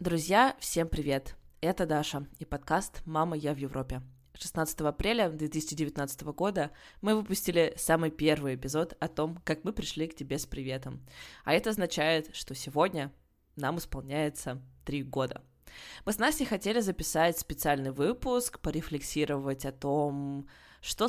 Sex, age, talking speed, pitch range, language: female, 20-39, 140 wpm, 145-185 Hz, Russian